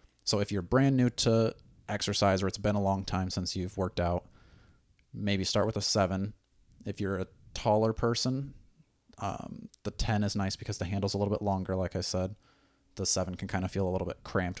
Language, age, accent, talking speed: English, 30-49, American, 215 wpm